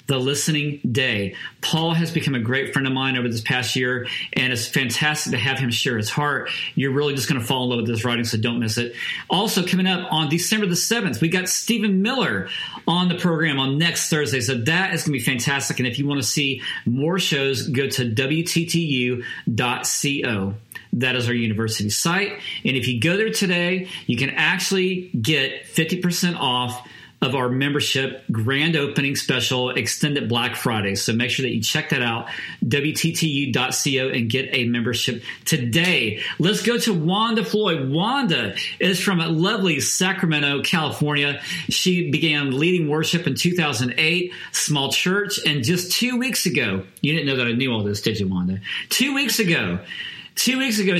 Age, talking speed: 40-59, 180 wpm